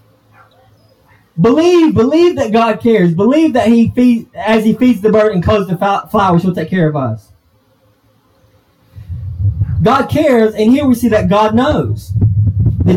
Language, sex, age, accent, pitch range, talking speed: English, male, 20-39, American, 145-225 Hz, 155 wpm